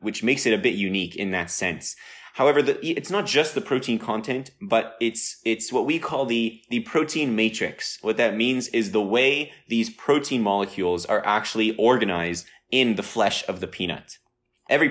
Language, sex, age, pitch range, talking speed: English, male, 20-39, 95-115 Hz, 180 wpm